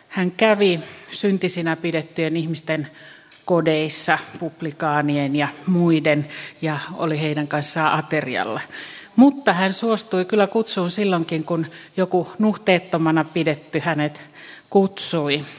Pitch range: 155-190 Hz